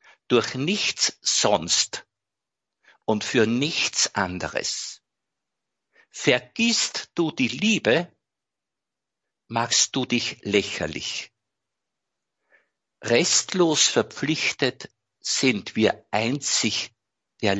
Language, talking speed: German, 70 wpm